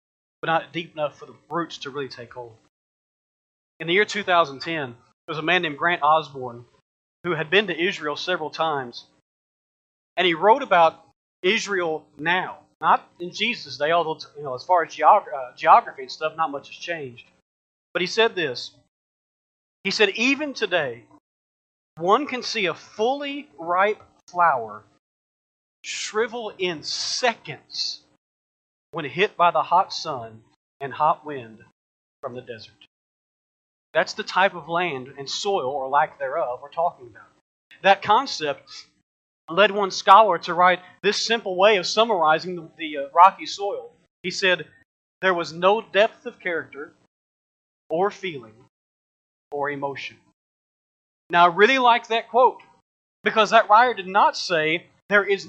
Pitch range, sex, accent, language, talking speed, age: 150-210 Hz, male, American, English, 150 wpm, 40-59